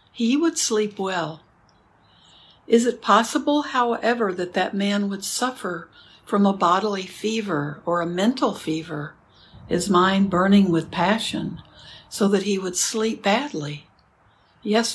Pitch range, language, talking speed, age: 175-225 Hz, English, 135 wpm, 60-79